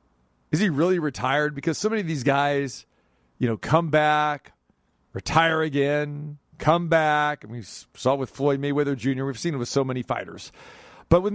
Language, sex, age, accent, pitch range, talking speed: English, male, 40-59, American, 125-150 Hz, 180 wpm